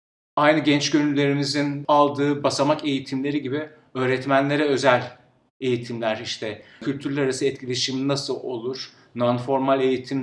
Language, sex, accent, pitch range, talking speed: Turkish, male, native, 115-140 Hz, 105 wpm